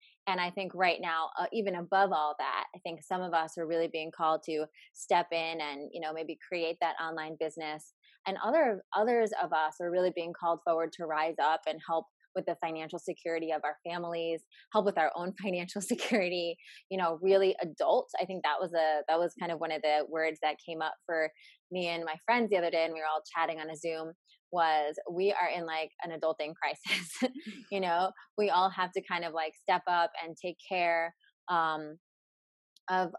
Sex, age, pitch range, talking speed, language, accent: female, 20-39, 160-190 Hz, 215 wpm, English, American